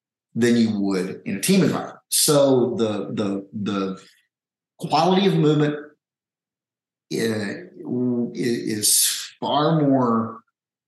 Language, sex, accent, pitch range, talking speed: English, male, American, 110-140 Hz, 95 wpm